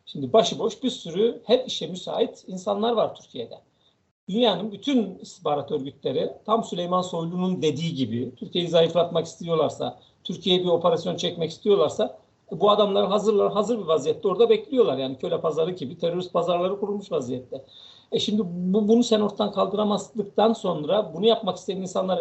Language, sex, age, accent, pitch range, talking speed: Turkish, male, 50-69, native, 175-225 Hz, 150 wpm